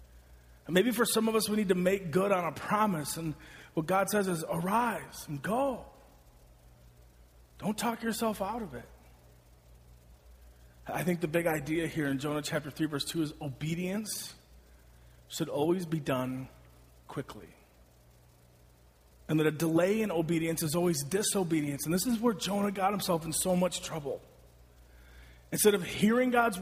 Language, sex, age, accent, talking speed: English, male, 30-49, American, 160 wpm